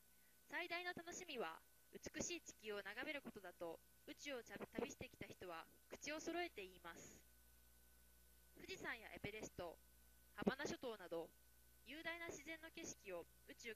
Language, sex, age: Japanese, female, 20-39